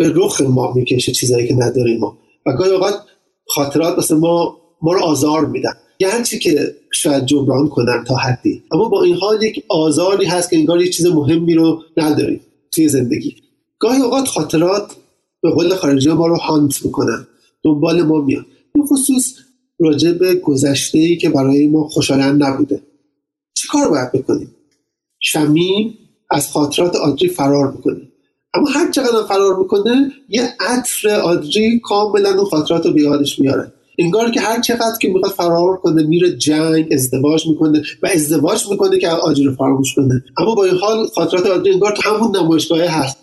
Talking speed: 160 wpm